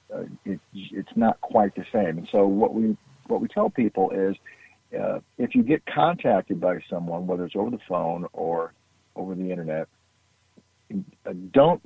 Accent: American